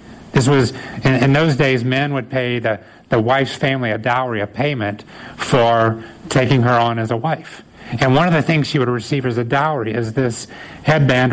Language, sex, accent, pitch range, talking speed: English, male, American, 125-175 Hz, 200 wpm